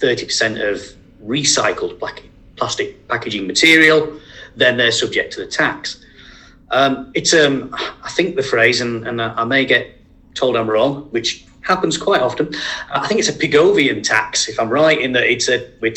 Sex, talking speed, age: male, 170 wpm, 30-49